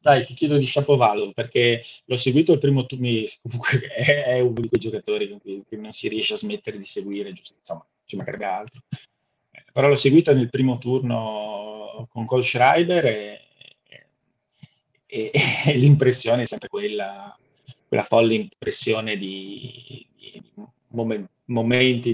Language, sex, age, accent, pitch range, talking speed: Italian, male, 30-49, native, 110-145 Hz, 150 wpm